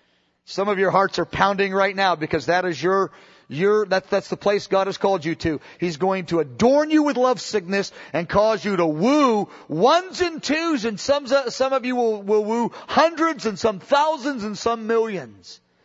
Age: 40-59